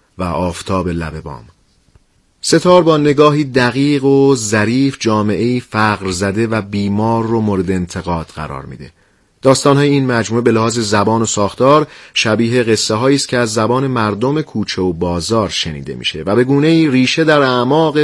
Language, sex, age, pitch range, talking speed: Persian, male, 30-49, 105-140 Hz, 160 wpm